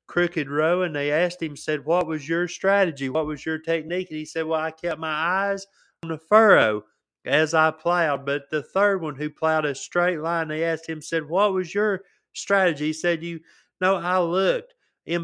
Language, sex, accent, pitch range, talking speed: English, male, American, 155-180 Hz, 210 wpm